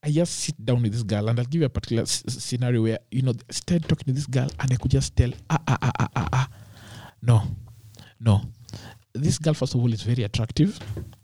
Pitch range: 115-160 Hz